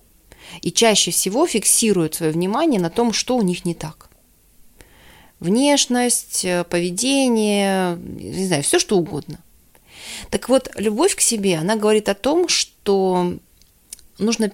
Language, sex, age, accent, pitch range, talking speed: Russian, female, 30-49, native, 180-230 Hz, 130 wpm